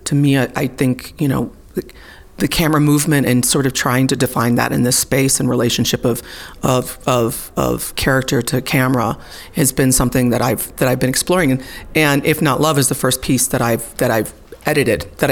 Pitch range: 125-140 Hz